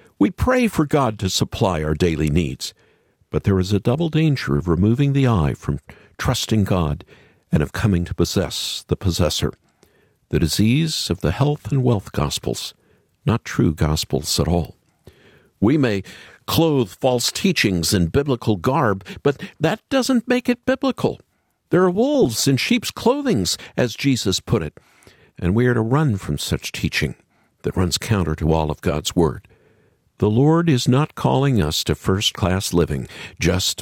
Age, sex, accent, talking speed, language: 60-79, male, American, 165 wpm, English